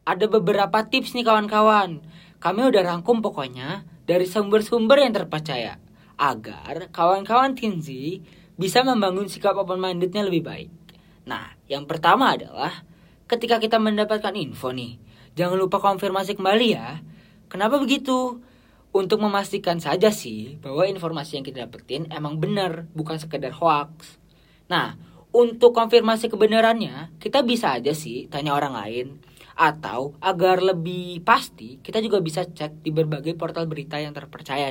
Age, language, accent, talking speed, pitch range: 20-39, Indonesian, native, 135 wpm, 130-195 Hz